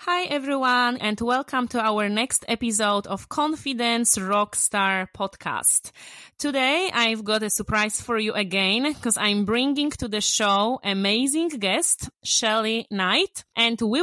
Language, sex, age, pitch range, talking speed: English, female, 20-39, 200-245 Hz, 135 wpm